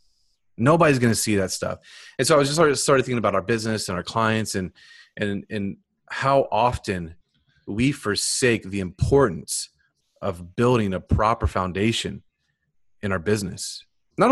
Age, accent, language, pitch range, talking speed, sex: 30-49, American, English, 100-120 Hz, 160 wpm, male